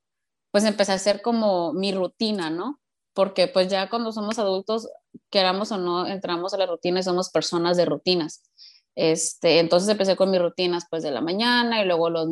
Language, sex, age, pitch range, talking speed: Spanish, female, 20-39, 175-210 Hz, 185 wpm